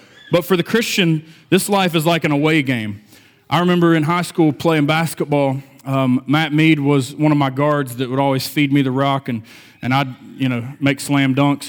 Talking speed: 210 wpm